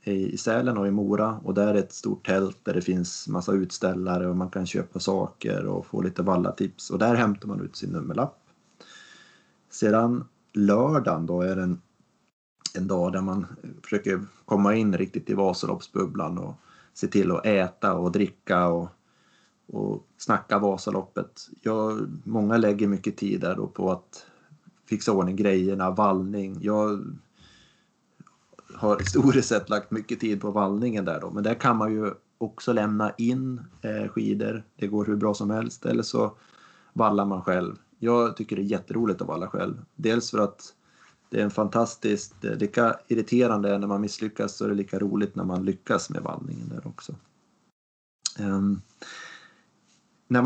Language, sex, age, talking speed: Swedish, male, 30-49, 170 wpm